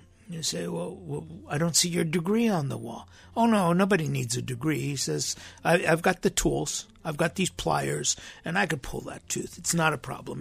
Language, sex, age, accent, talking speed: English, male, 60-79, American, 220 wpm